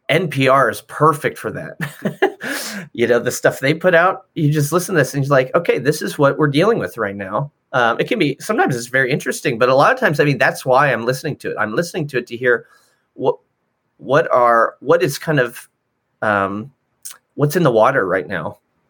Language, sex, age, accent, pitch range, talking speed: English, male, 30-49, American, 125-165 Hz, 220 wpm